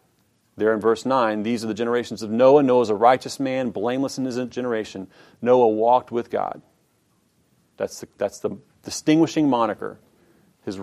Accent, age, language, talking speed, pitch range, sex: American, 40-59, English, 165 wpm, 130-170 Hz, male